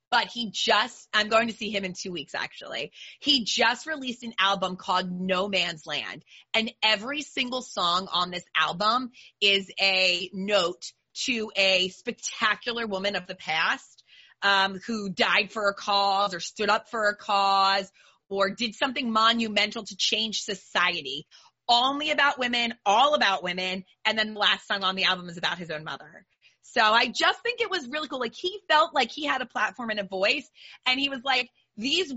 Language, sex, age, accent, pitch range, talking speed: English, female, 30-49, American, 200-260 Hz, 185 wpm